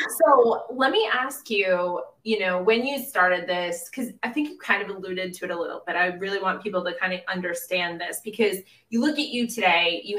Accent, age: American, 20-39